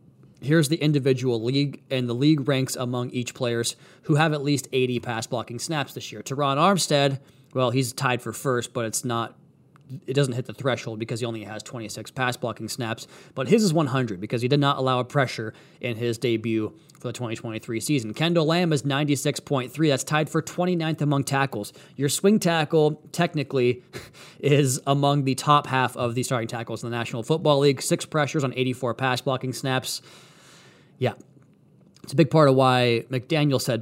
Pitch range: 125-150 Hz